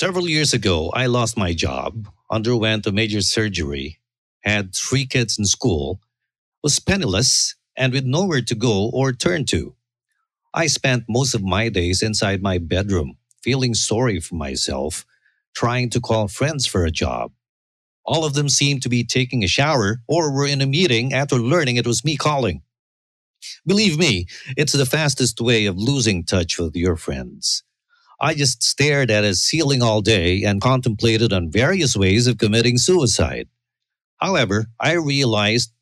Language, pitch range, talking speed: English, 100-140 Hz, 160 wpm